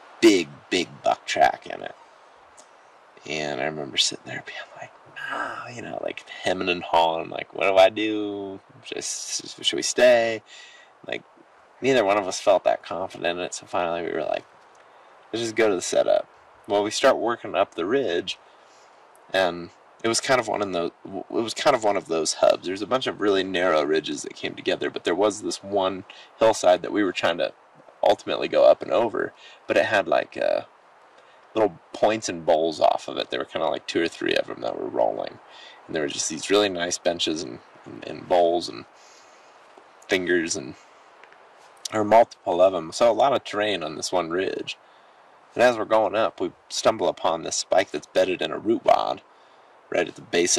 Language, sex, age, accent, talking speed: English, male, 20-39, American, 210 wpm